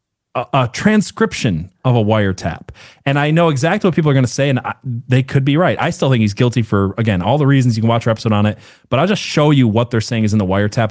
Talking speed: 270 wpm